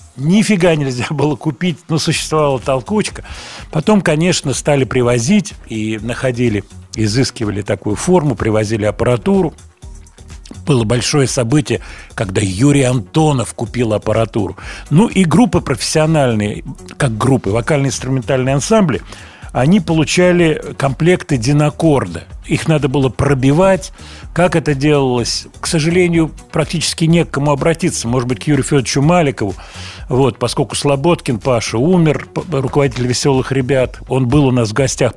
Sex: male